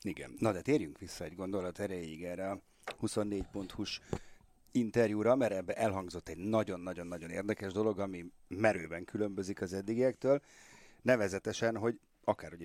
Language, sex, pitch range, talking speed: Hungarian, male, 95-115 Hz, 130 wpm